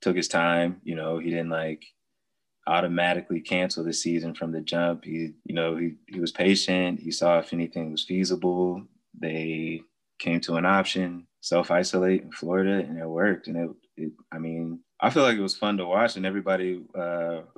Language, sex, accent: English, male, American